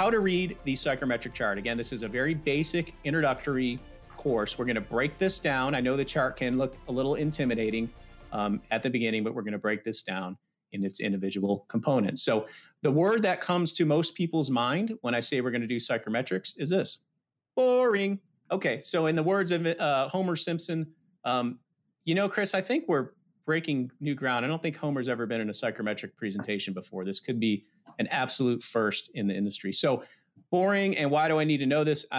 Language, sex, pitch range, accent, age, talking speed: English, male, 110-160 Hz, American, 40-59, 215 wpm